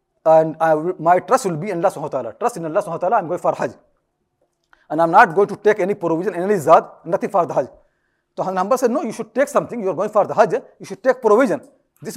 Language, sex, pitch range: English, male, 180-235 Hz